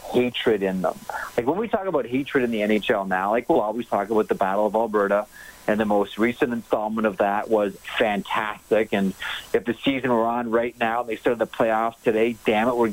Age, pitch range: 40-59, 105-125 Hz